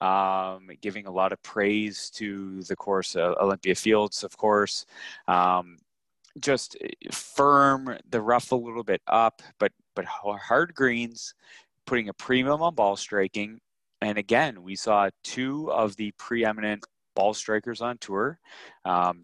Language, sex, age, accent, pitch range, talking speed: English, male, 20-39, American, 95-115 Hz, 145 wpm